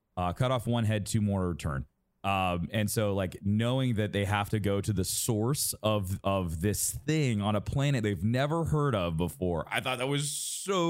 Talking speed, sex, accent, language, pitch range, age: 210 wpm, male, American, English, 95-135 Hz, 30-49